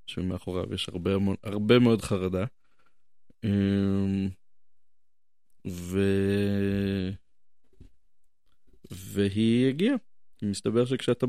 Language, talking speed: Hebrew, 60 wpm